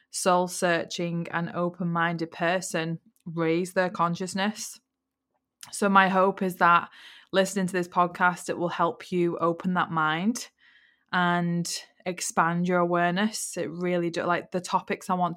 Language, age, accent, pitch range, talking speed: English, 20-39, British, 170-190 Hz, 145 wpm